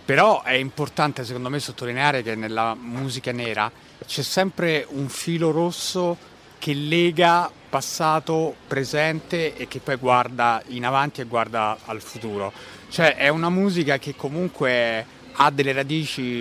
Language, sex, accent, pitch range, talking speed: English, male, Italian, 120-145 Hz, 140 wpm